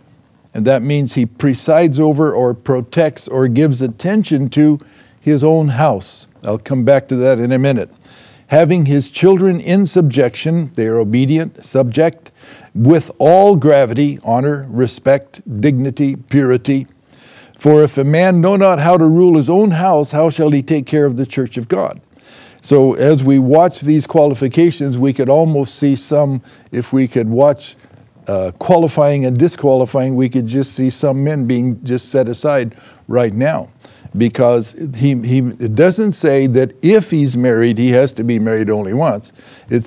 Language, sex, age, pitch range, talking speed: English, male, 60-79, 125-155 Hz, 165 wpm